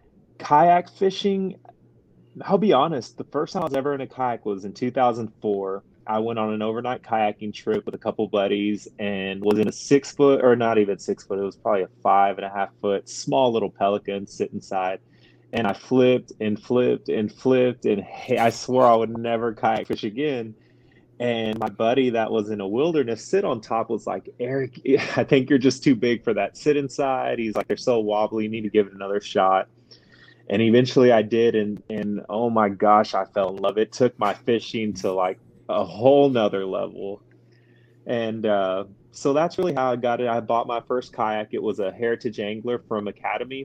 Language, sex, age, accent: English, male, 20-39, American